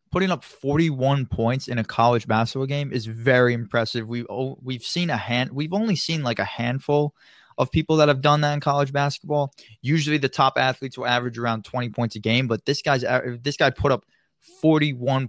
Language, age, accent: English, 20-39, American